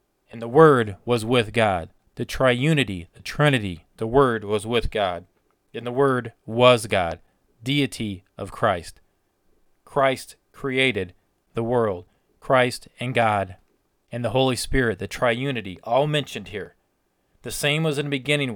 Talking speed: 145 wpm